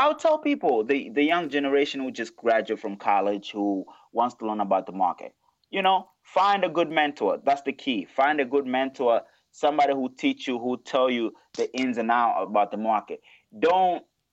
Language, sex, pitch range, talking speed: English, male, 120-180 Hz, 195 wpm